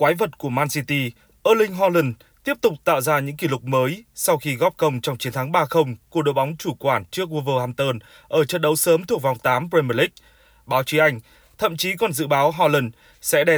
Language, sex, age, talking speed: Vietnamese, male, 20-39, 220 wpm